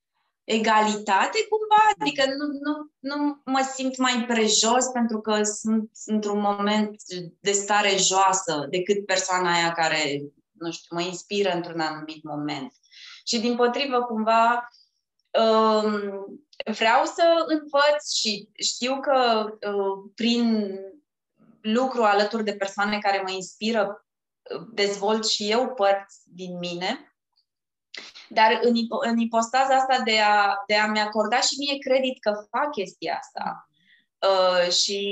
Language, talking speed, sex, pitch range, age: Romanian, 120 wpm, female, 190-240 Hz, 20-39